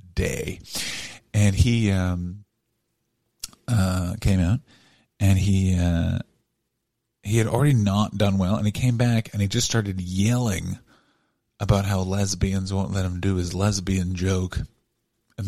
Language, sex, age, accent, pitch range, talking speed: English, male, 40-59, American, 95-135 Hz, 140 wpm